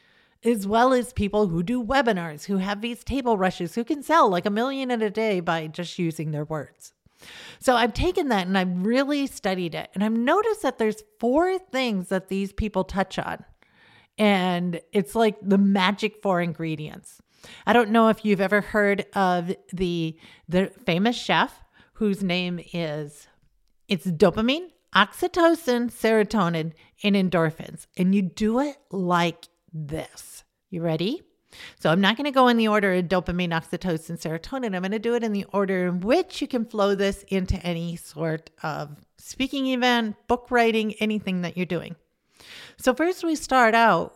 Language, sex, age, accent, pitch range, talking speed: English, female, 40-59, American, 175-235 Hz, 175 wpm